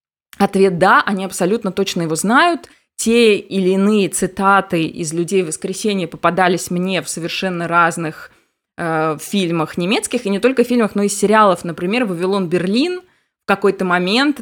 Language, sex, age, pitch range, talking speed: Russian, female, 20-39, 180-230 Hz, 145 wpm